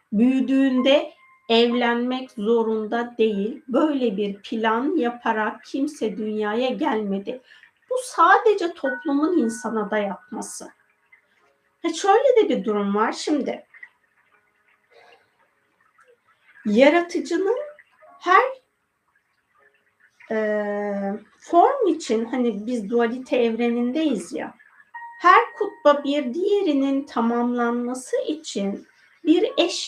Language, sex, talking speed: Turkish, female, 80 wpm